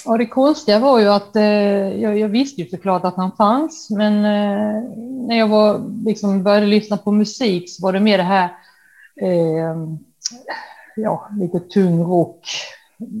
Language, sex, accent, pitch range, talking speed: Swedish, female, native, 175-225 Hz, 165 wpm